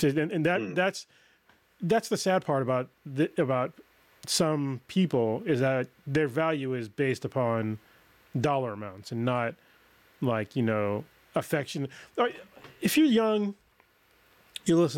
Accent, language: American, English